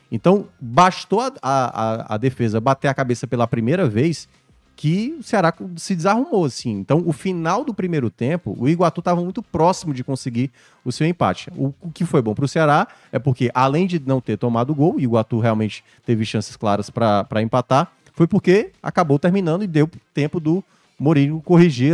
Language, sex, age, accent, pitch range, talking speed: Portuguese, male, 20-39, Brazilian, 125-175 Hz, 190 wpm